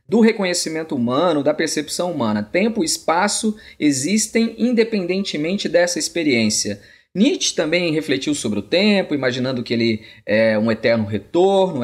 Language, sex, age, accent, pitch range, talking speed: Portuguese, male, 20-39, Brazilian, 130-215 Hz, 130 wpm